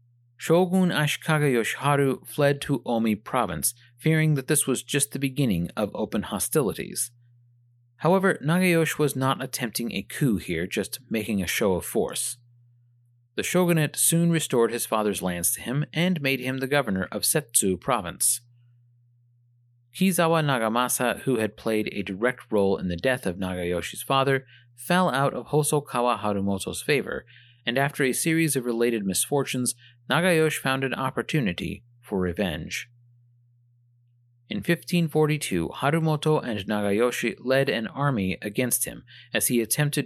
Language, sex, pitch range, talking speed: English, male, 120-145 Hz, 140 wpm